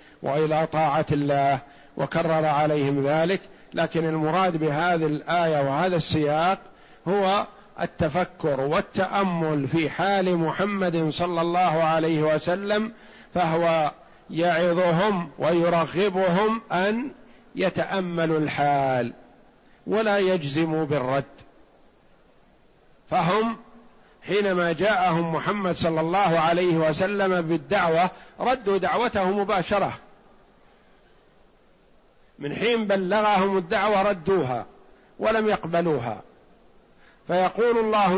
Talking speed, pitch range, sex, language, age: 80 wpm, 155-200 Hz, male, Arabic, 50-69